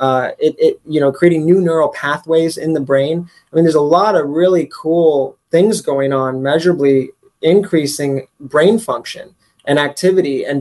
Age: 20-39